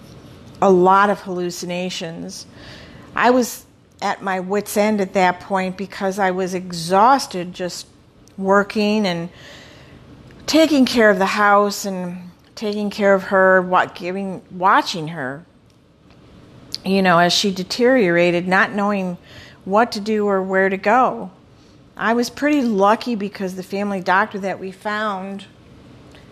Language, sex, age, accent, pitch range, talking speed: English, female, 50-69, American, 180-210 Hz, 130 wpm